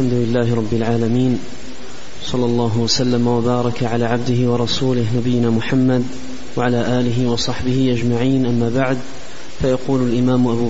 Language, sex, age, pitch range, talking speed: Arabic, male, 30-49, 125-135 Hz, 125 wpm